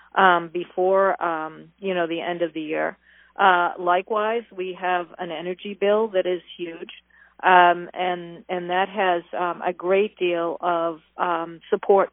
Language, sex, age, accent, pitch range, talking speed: English, female, 40-59, American, 170-195 Hz, 160 wpm